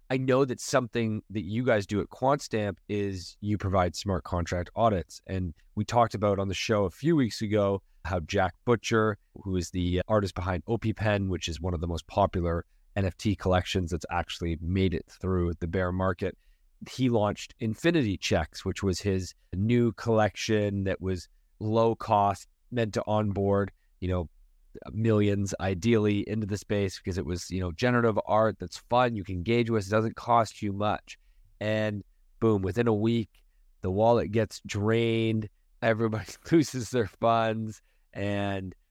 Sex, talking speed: male, 170 wpm